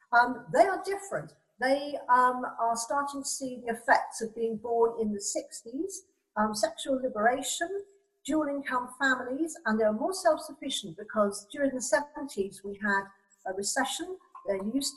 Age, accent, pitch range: 50-69, British, 205-270 Hz